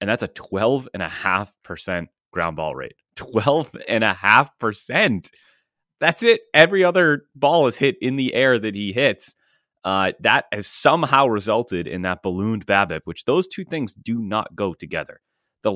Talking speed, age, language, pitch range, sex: 180 wpm, 30-49, English, 85-115 Hz, male